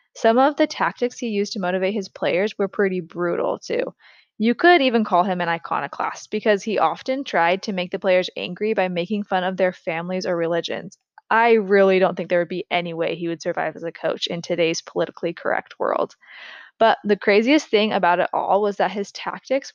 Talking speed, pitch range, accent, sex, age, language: 210 wpm, 185-235 Hz, American, female, 20-39, English